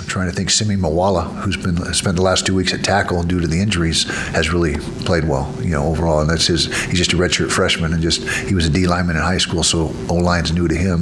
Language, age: English, 50-69